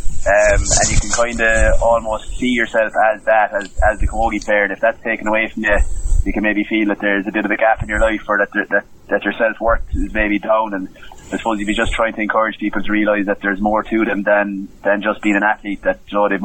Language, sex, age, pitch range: English, male, 20-39, 100-110 Hz